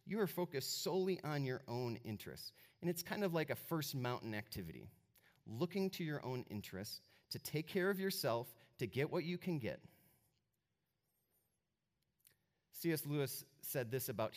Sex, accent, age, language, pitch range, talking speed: male, American, 30-49, English, 125-175 Hz, 160 wpm